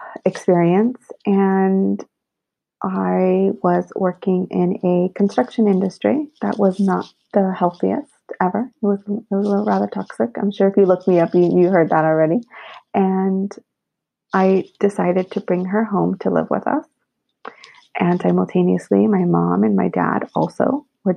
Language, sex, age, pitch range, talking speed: English, female, 30-49, 170-205 Hz, 150 wpm